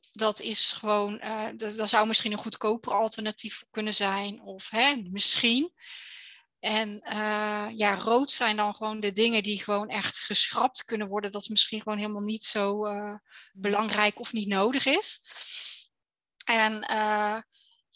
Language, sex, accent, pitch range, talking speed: Dutch, female, Dutch, 215-255 Hz, 155 wpm